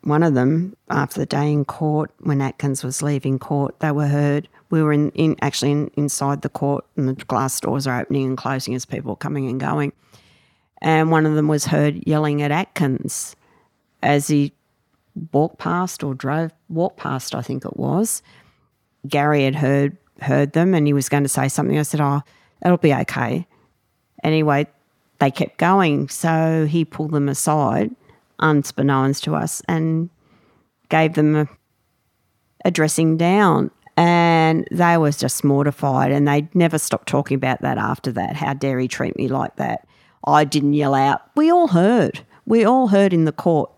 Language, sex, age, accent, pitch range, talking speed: English, female, 50-69, Australian, 140-170 Hz, 180 wpm